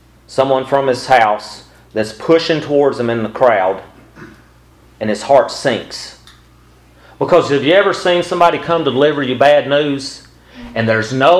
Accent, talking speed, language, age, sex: American, 160 wpm, English, 40-59, male